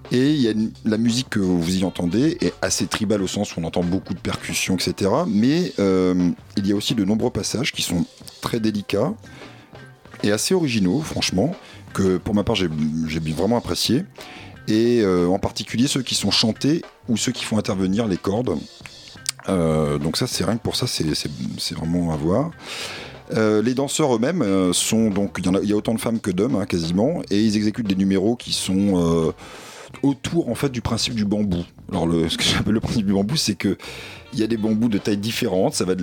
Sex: male